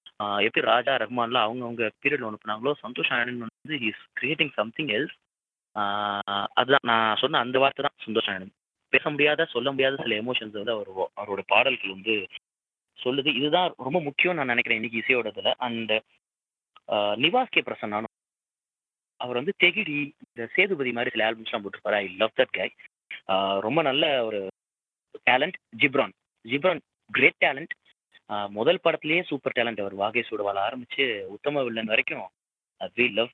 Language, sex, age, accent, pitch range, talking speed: Tamil, male, 30-49, native, 110-150 Hz, 140 wpm